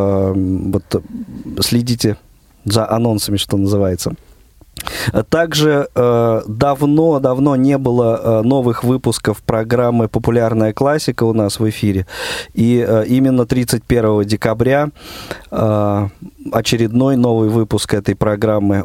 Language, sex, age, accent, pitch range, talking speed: Russian, male, 20-39, native, 105-125 Hz, 90 wpm